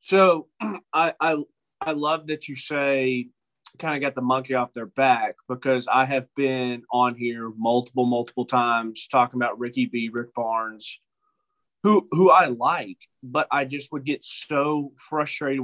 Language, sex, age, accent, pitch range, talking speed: English, male, 30-49, American, 120-145 Hz, 160 wpm